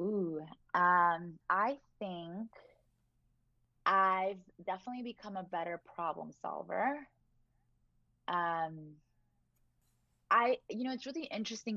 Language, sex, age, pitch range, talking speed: English, female, 20-39, 160-200 Hz, 90 wpm